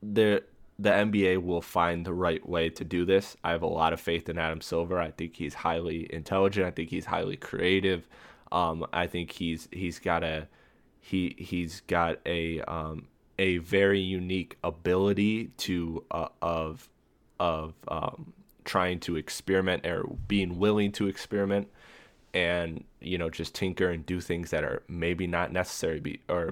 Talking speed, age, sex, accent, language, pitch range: 165 wpm, 20-39, male, American, English, 80-95 Hz